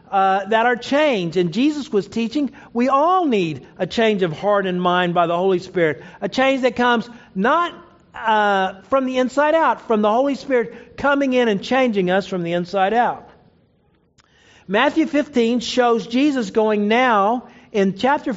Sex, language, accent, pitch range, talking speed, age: male, English, American, 210-275 Hz, 170 wpm, 50-69